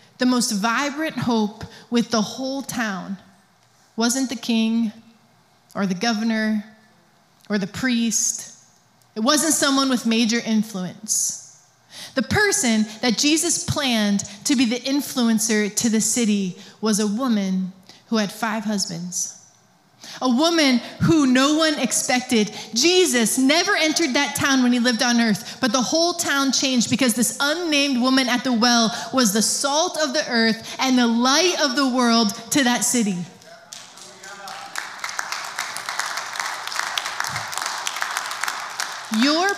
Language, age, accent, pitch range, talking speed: English, 20-39, American, 205-260 Hz, 130 wpm